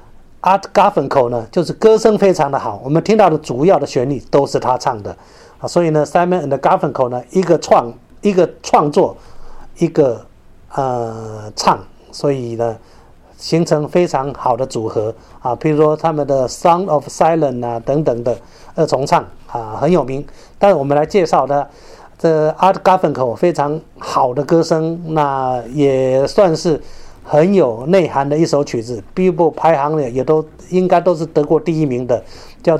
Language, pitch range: Chinese, 130-175 Hz